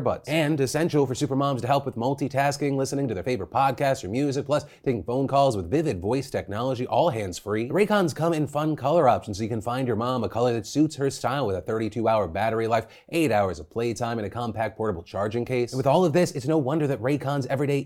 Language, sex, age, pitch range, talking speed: English, male, 30-49, 120-155 Hz, 240 wpm